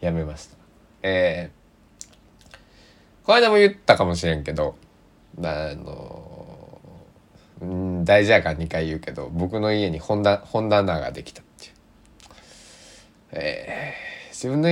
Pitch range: 80-115 Hz